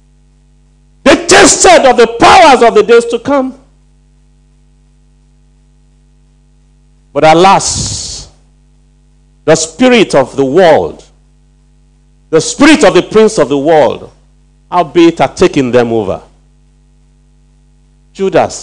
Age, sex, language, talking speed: 50-69, male, English, 95 wpm